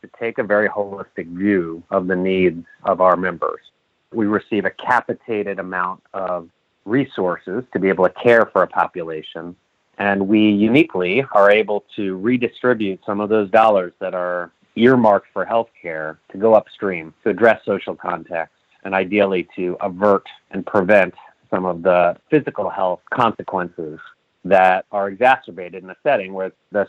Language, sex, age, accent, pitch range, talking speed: English, male, 30-49, American, 90-105 Hz, 160 wpm